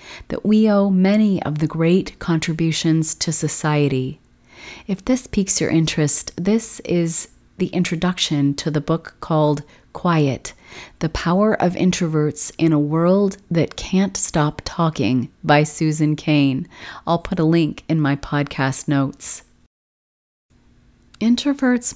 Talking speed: 130 wpm